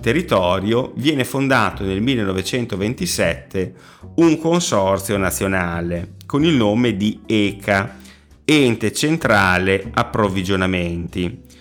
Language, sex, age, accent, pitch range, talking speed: Italian, male, 30-49, native, 95-115 Hz, 85 wpm